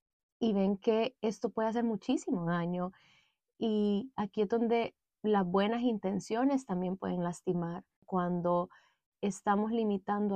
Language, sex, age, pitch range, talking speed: Spanish, female, 20-39, 190-240 Hz, 120 wpm